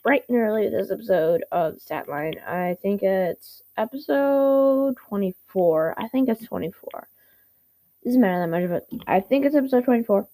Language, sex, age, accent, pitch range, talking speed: English, female, 10-29, American, 180-215 Hz, 150 wpm